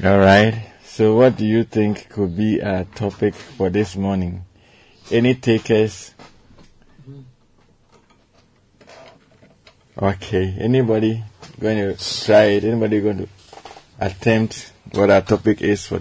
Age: 50-69